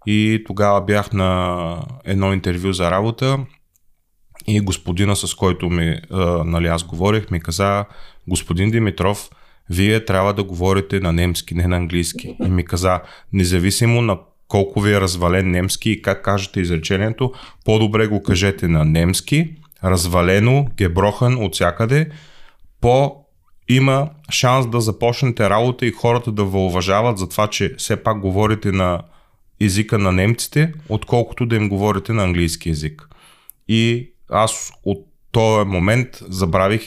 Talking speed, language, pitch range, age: 135 wpm, Bulgarian, 90-110 Hz, 30-49